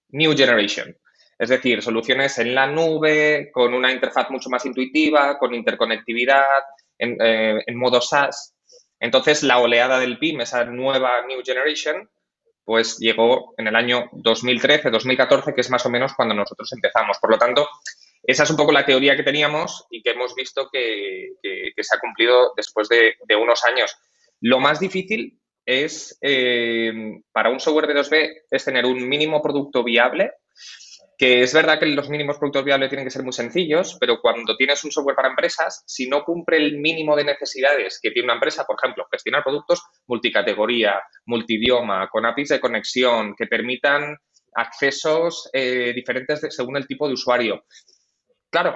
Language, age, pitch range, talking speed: Spanish, 20-39, 125-155 Hz, 170 wpm